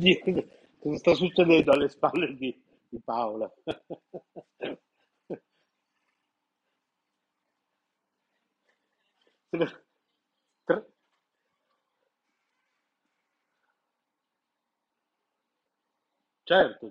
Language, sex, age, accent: Italian, male, 60-79, native